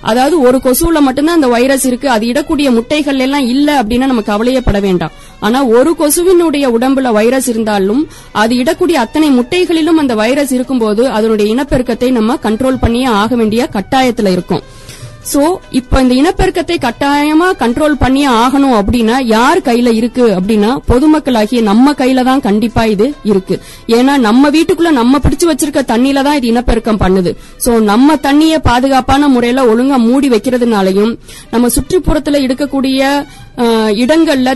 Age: 20-39